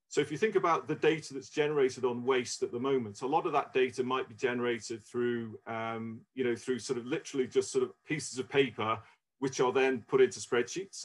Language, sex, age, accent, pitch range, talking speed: English, male, 40-59, British, 125-185 Hz, 230 wpm